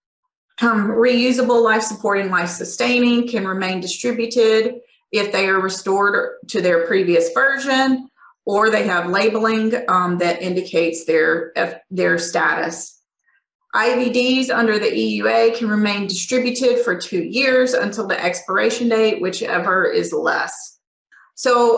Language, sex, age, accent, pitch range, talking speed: English, female, 30-49, American, 200-255 Hz, 125 wpm